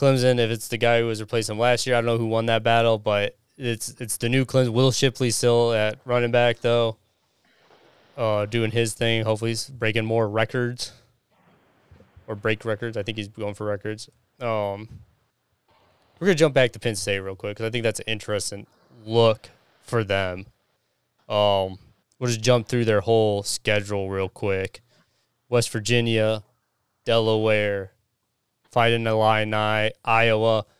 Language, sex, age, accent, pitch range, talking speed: English, male, 20-39, American, 110-125 Hz, 170 wpm